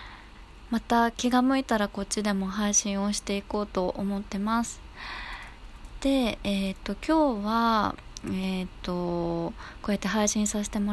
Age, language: 20-39, Japanese